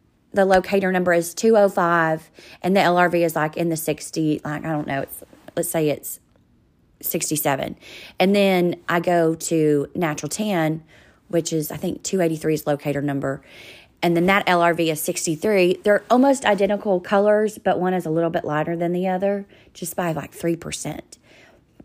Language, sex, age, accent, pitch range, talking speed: English, female, 30-49, American, 160-210 Hz, 165 wpm